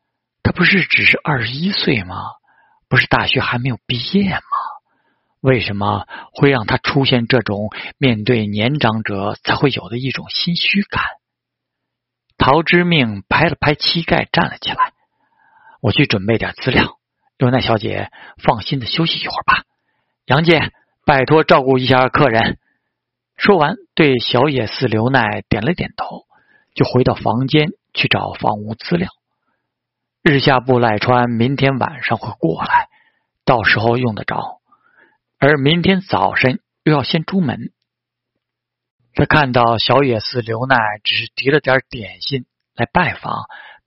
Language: Chinese